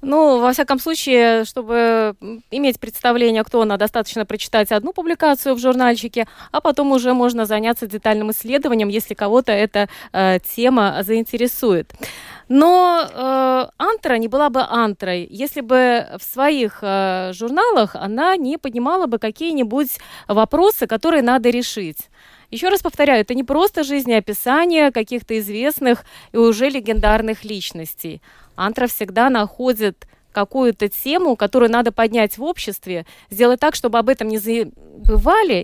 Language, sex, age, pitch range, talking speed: Russian, female, 20-39, 215-275 Hz, 135 wpm